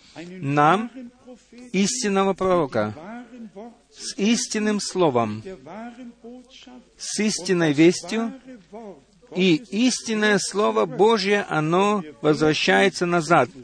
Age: 50-69